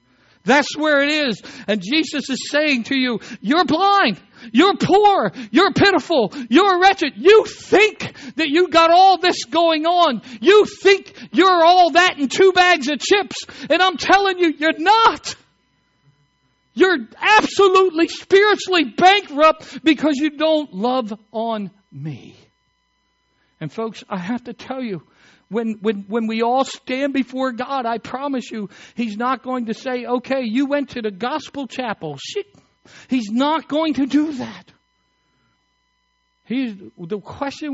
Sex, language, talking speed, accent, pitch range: male, English, 150 wpm, American, 235-330 Hz